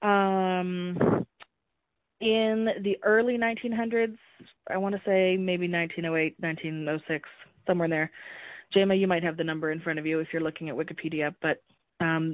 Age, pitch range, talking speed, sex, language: 20-39, 170-205 Hz, 150 wpm, female, English